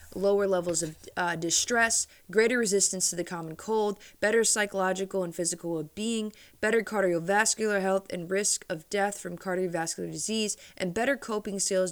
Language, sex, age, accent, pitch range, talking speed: English, female, 20-39, American, 170-215 Hz, 155 wpm